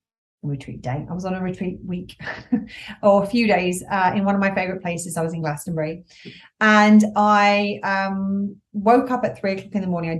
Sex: female